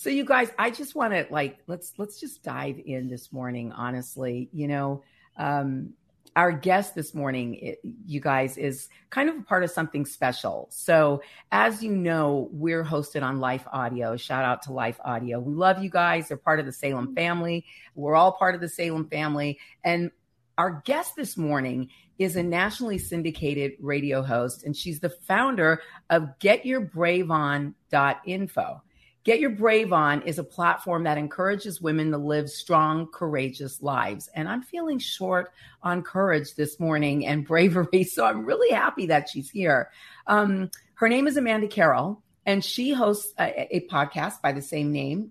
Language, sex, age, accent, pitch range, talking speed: English, female, 40-59, American, 145-190 Hz, 175 wpm